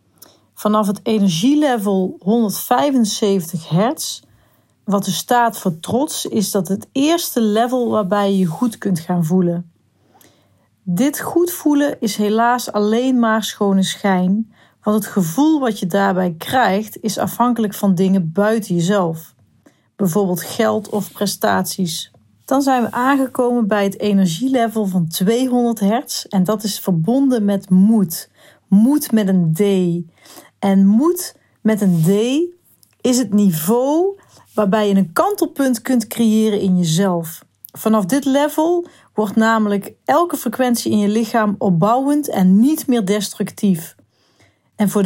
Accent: Dutch